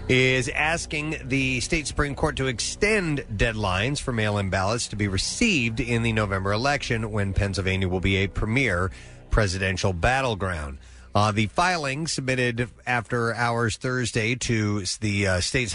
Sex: male